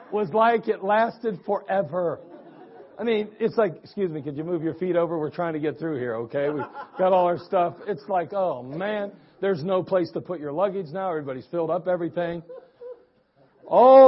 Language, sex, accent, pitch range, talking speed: English, male, American, 145-195 Hz, 195 wpm